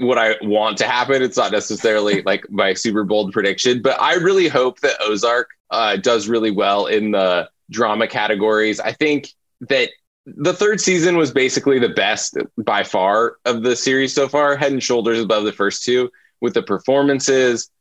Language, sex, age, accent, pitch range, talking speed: English, male, 20-39, American, 105-130 Hz, 180 wpm